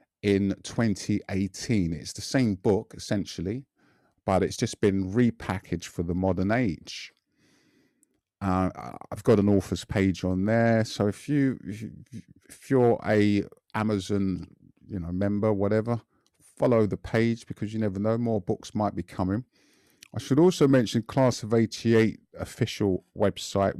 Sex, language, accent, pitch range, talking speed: male, English, British, 95-115 Hz, 140 wpm